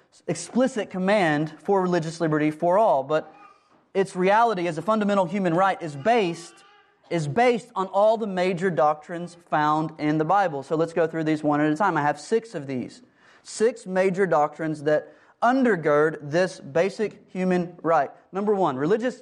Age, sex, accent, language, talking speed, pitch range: 30-49, male, American, English, 165 wpm, 170-225 Hz